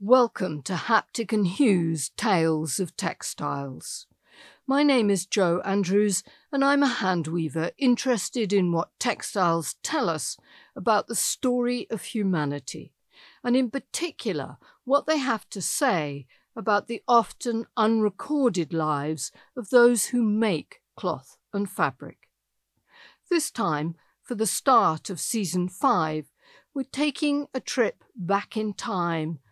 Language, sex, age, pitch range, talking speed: English, female, 60-79, 170-240 Hz, 130 wpm